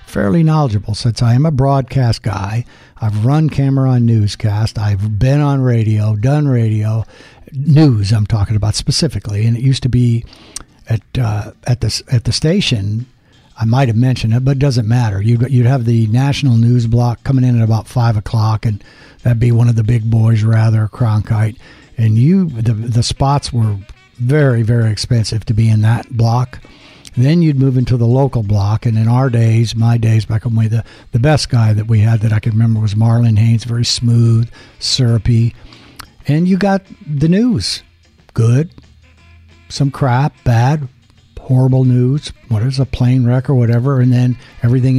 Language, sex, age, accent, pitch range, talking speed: English, male, 60-79, American, 110-130 Hz, 180 wpm